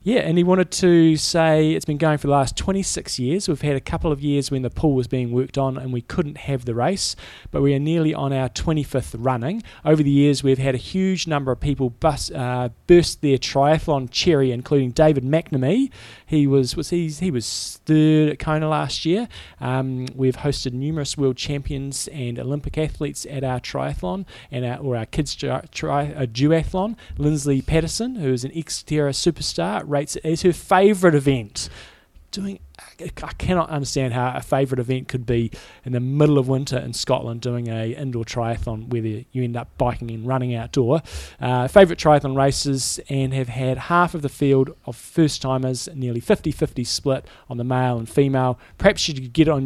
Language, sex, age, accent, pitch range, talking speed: English, male, 20-39, Australian, 125-155 Hz, 200 wpm